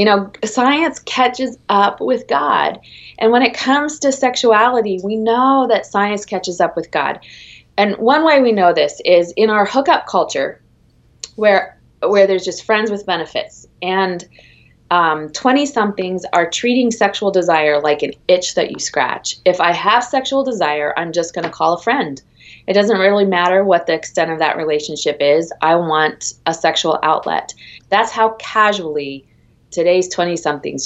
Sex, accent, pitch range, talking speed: female, American, 170-235 Hz, 165 wpm